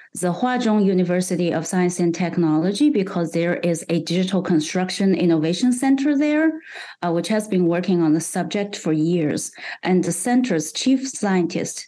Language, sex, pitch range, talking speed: English, female, 170-205 Hz, 155 wpm